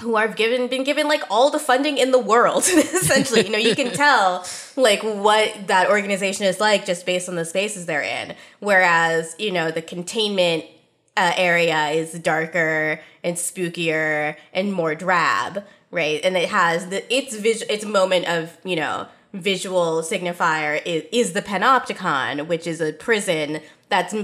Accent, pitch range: American, 165-225 Hz